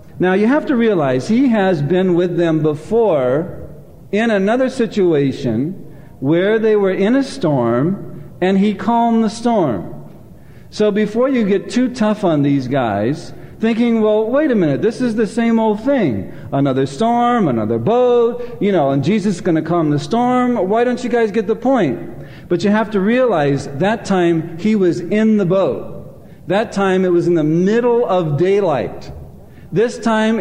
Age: 50-69